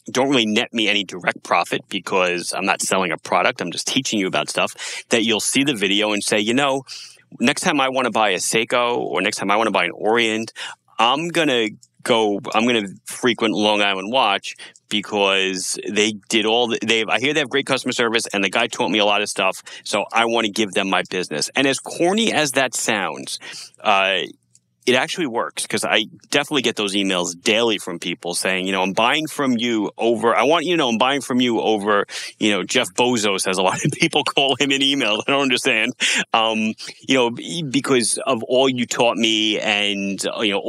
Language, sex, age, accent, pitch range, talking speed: English, male, 30-49, American, 100-130 Hz, 225 wpm